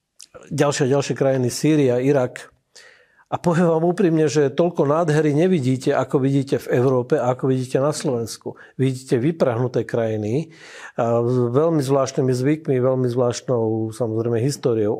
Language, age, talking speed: Slovak, 50-69, 130 wpm